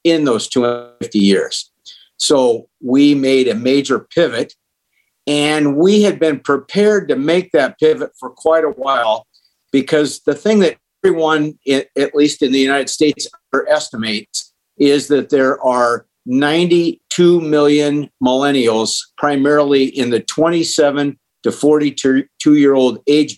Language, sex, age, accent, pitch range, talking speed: English, male, 50-69, American, 130-160 Hz, 135 wpm